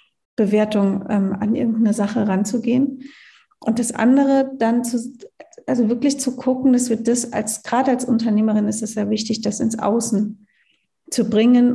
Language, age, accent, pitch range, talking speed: German, 40-59, German, 215-255 Hz, 160 wpm